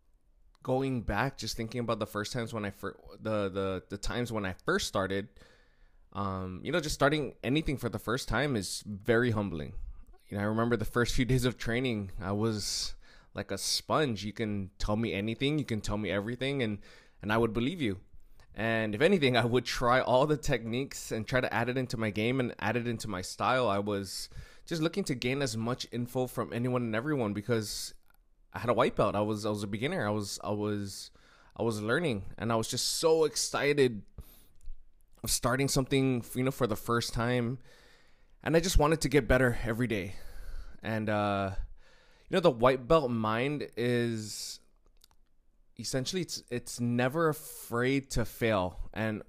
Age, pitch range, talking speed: 20-39, 100-125 Hz, 195 wpm